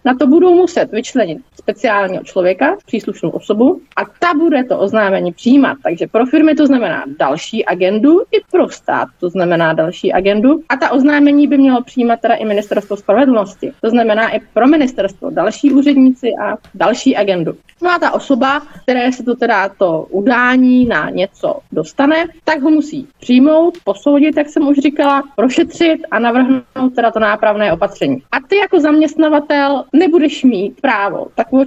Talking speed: 165 wpm